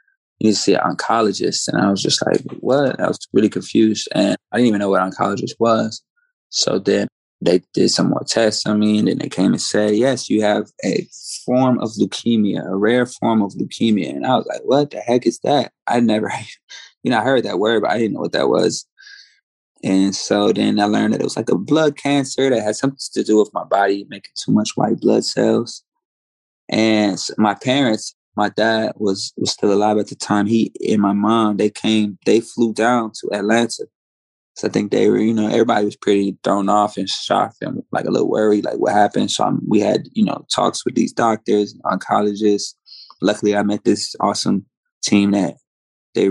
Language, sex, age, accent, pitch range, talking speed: English, male, 20-39, American, 100-115 Hz, 215 wpm